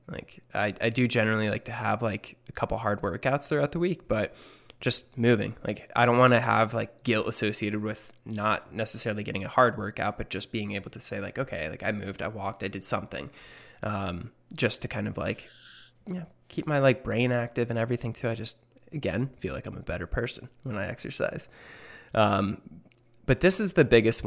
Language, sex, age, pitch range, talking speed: English, male, 20-39, 105-120 Hz, 210 wpm